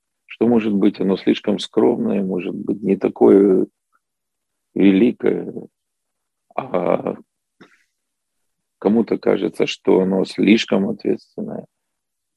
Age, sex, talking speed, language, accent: 40-59, male, 85 wpm, Russian, native